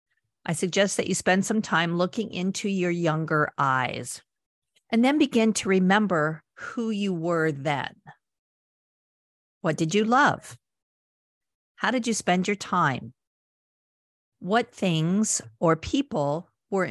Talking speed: 130 wpm